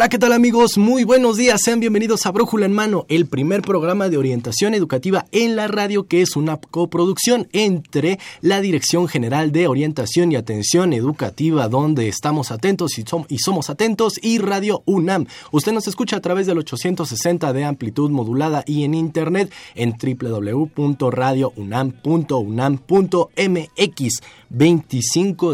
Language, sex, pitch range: Spanish, male, 125-185 Hz